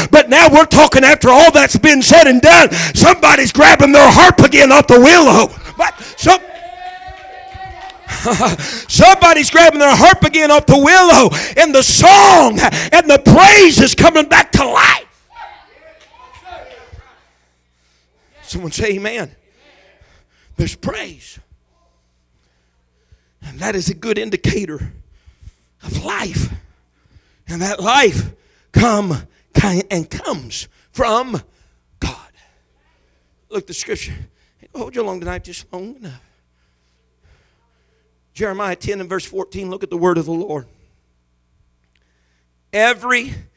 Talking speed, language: 115 wpm, English